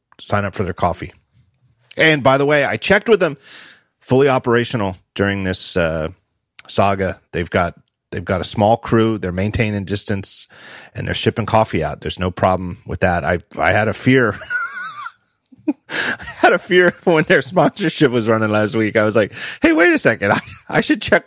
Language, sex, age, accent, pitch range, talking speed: English, male, 40-59, American, 90-125 Hz, 185 wpm